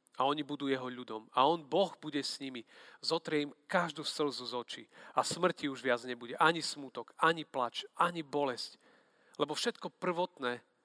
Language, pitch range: Slovak, 130-155 Hz